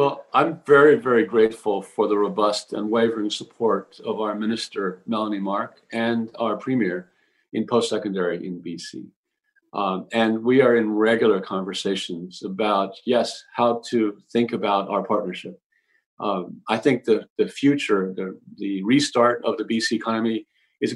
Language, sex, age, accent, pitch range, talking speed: English, male, 40-59, American, 105-120 Hz, 150 wpm